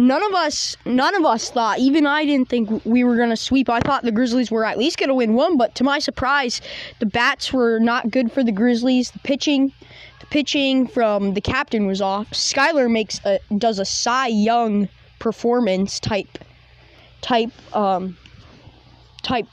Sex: female